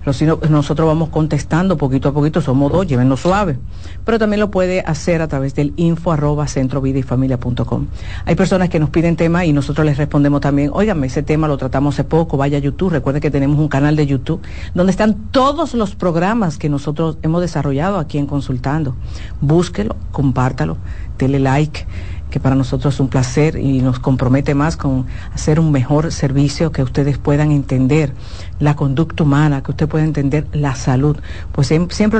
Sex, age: female, 50-69